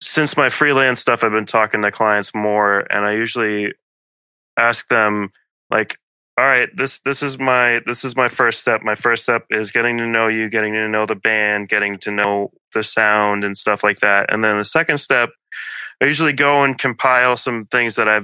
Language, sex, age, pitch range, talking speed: English, male, 20-39, 105-120 Hz, 205 wpm